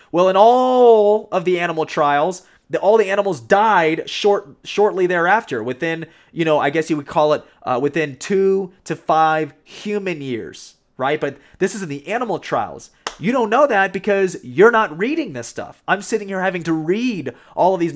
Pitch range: 150-190 Hz